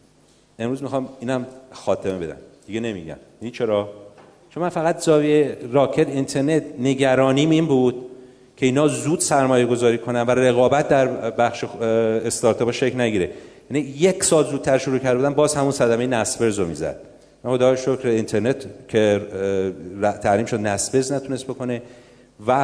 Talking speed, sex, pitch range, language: 140 wpm, male, 110-140 Hz, Persian